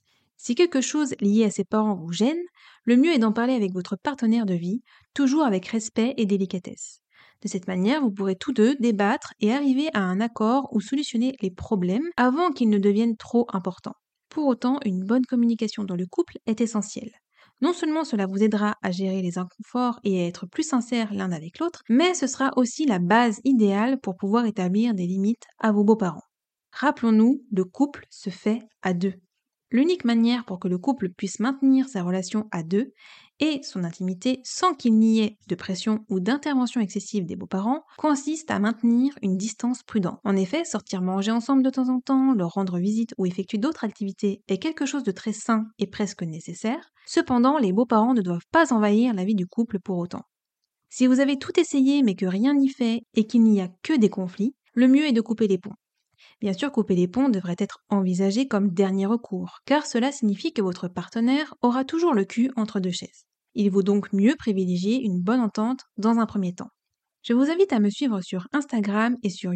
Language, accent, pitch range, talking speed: French, French, 200-255 Hz, 205 wpm